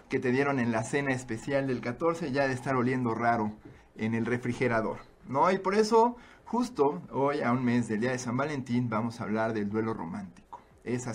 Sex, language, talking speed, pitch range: male, Spanish, 205 wpm, 110-145 Hz